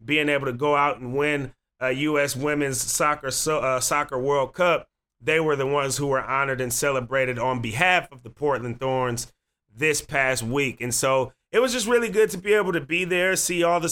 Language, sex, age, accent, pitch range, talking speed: English, male, 30-49, American, 125-145 Hz, 215 wpm